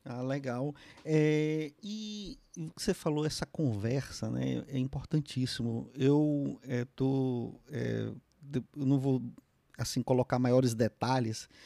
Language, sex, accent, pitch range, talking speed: Portuguese, male, Brazilian, 120-145 Hz, 120 wpm